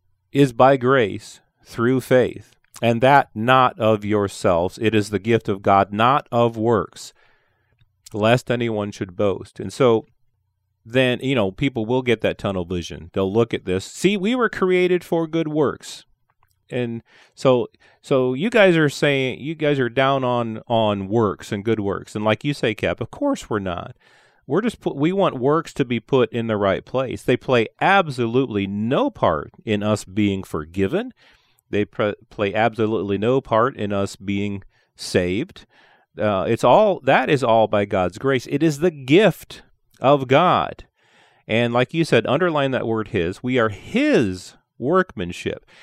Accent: American